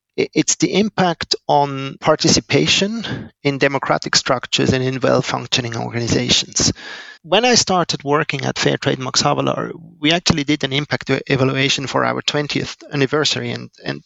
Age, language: 40-59, English